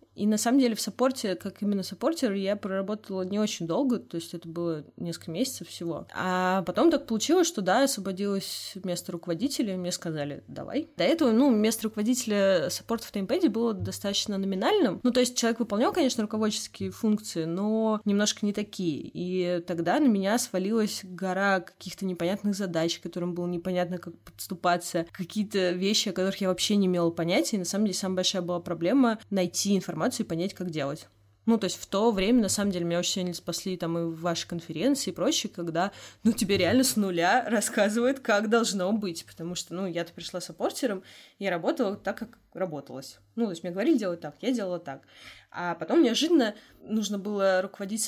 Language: Russian